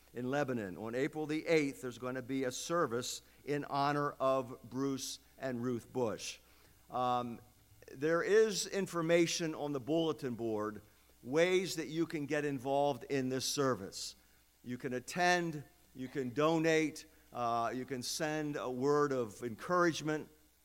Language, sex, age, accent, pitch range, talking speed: English, male, 50-69, American, 115-150 Hz, 140 wpm